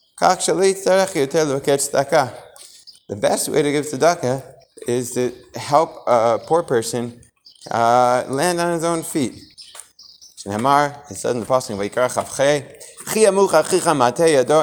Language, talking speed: English, 75 wpm